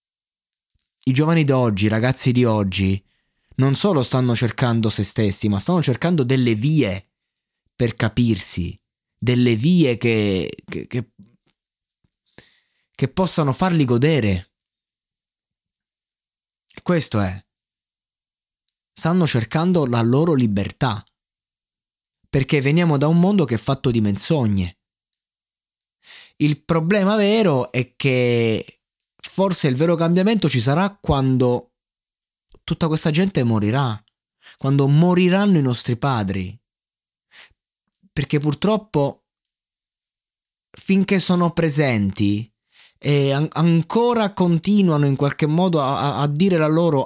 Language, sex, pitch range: Italian, male, 105-165 Hz